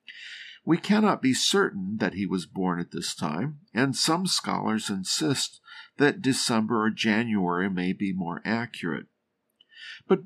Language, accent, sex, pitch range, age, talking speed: English, American, male, 105-150 Hz, 50-69, 140 wpm